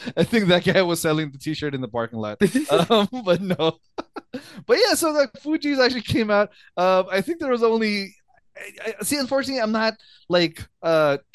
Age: 20-39